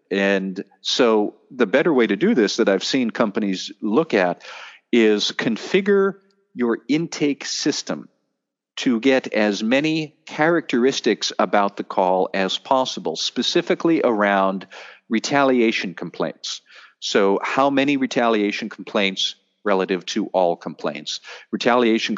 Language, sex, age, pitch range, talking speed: English, male, 50-69, 95-130 Hz, 115 wpm